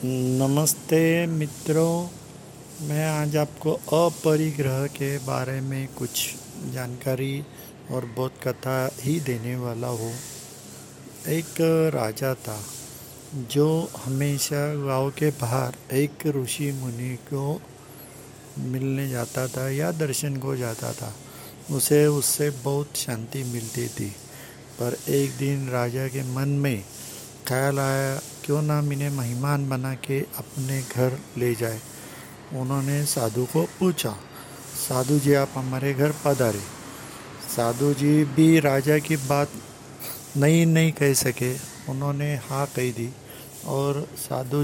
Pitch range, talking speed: 125-145 Hz, 120 wpm